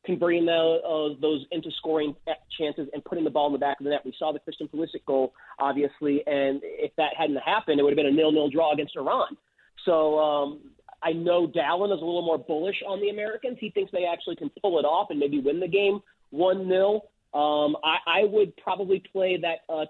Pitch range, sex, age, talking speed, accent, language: 145-185 Hz, male, 30-49, 215 wpm, American, English